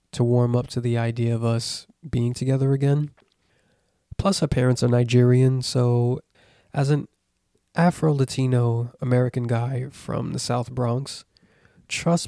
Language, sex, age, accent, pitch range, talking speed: English, male, 20-39, American, 120-135 Hz, 130 wpm